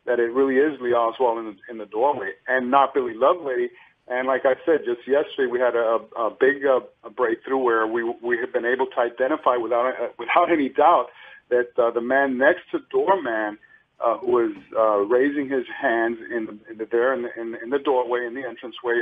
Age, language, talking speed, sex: 50-69, English, 210 wpm, male